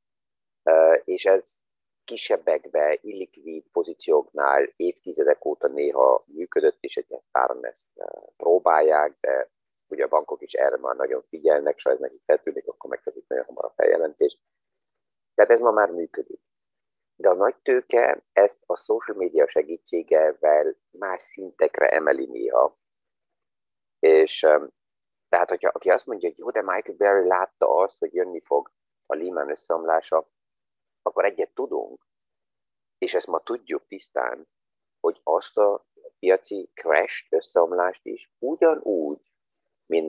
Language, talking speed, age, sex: Hungarian, 130 wpm, 30-49, male